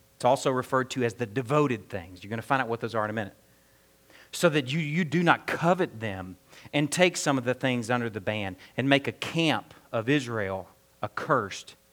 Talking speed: 215 wpm